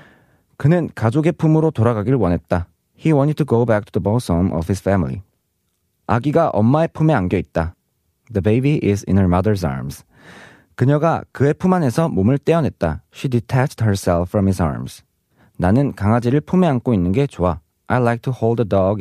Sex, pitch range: male, 100-155 Hz